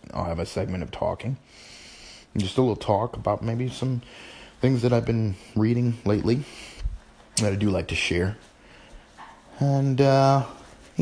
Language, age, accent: English, 30-49, American